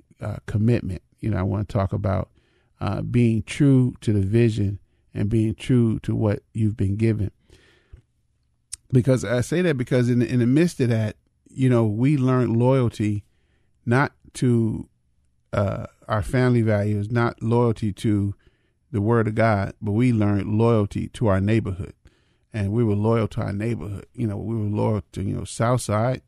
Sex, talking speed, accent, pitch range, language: male, 175 wpm, American, 105-120 Hz, English